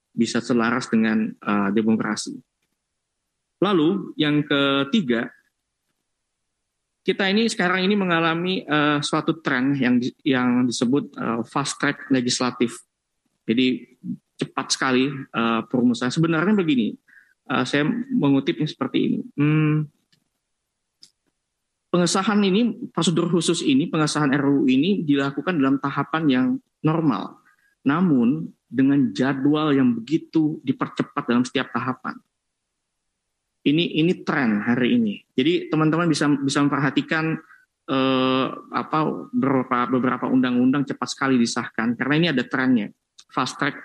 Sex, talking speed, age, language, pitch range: male, 110 wpm, 20-39, Indonesian, 130-190 Hz